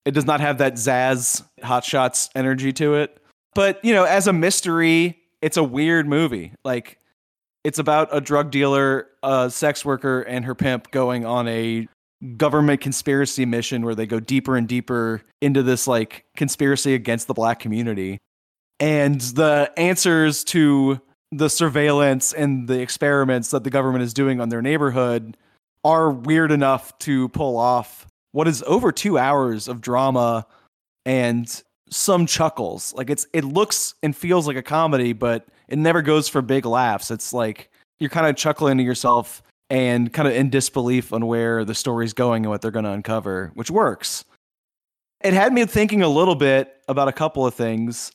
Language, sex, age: English, male, 20-39